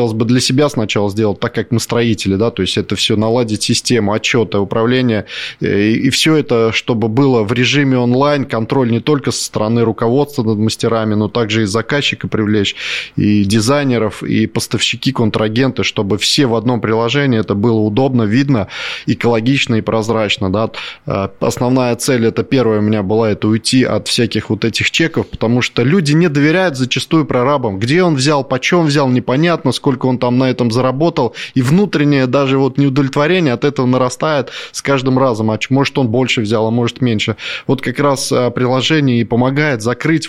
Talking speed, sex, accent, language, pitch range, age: 175 wpm, male, native, Russian, 110-135 Hz, 20-39